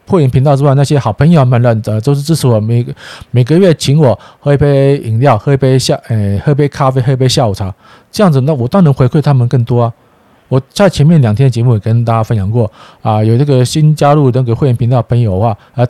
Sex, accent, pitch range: male, native, 110-145 Hz